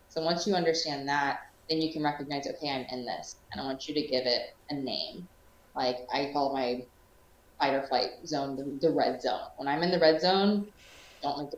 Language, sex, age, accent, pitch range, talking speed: English, female, 20-39, American, 135-160 Hz, 220 wpm